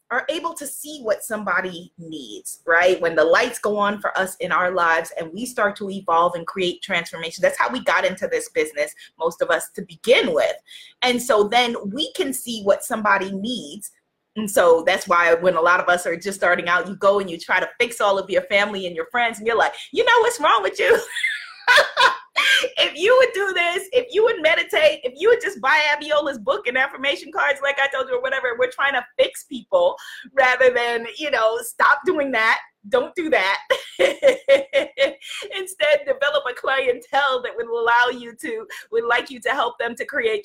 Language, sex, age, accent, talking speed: English, female, 20-39, American, 210 wpm